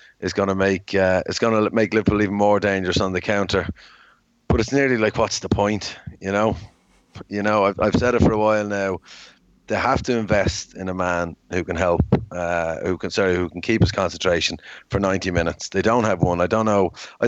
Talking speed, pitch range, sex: 220 wpm, 95-110 Hz, male